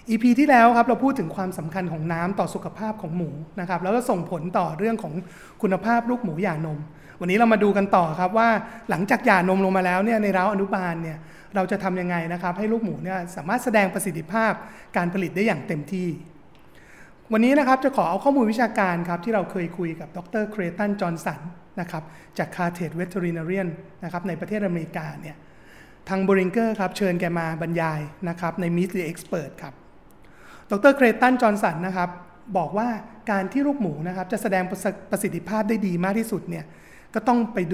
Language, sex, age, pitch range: Thai, male, 30-49, 175-215 Hz